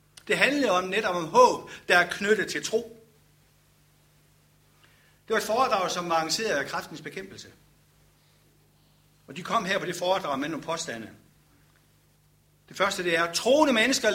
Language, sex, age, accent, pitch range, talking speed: Danish, male, 60-79, native, 170-230 Hz, 155 wpm